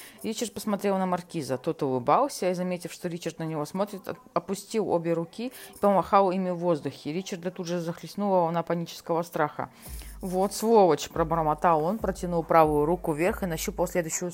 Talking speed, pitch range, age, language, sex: 165 wpm, 165-200 Hz, 20-39, Russian, female